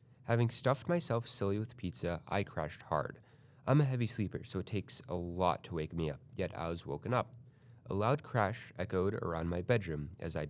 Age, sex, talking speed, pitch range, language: 30-49, male, 205 wpm, 95-125 Hz, English